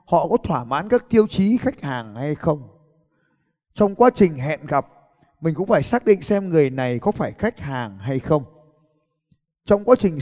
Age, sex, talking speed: 20-39, male, 195 wpm